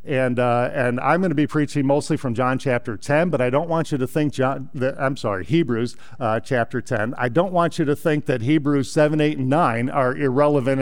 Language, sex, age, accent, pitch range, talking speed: English, male, 50-69, American, 125-155 Hz, 225 wpm